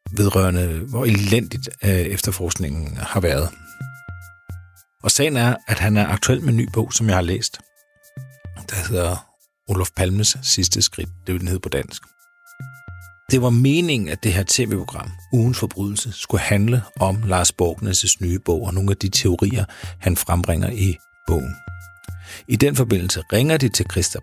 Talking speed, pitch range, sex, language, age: 155 wpm, 90-120 Hz, male, Danish, 60-79